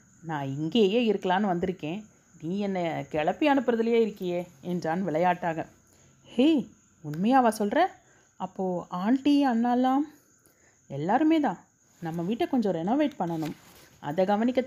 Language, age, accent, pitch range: Tamil, 30-49, native, 160-225 Hz